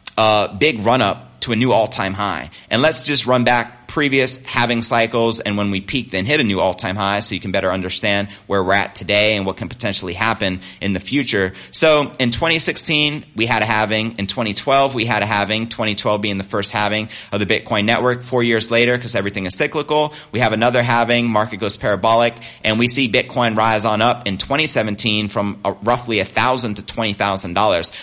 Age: 30-49